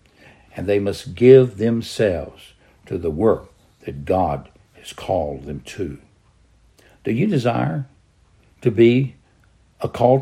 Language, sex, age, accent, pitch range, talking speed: English, male, 60-79, American, 100-130 Hz, 125 wpm